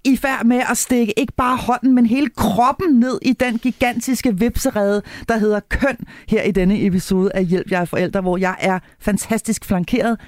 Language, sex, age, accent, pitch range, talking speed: Danish, female, 40-59, native, 185-235 Hz, 185 wpm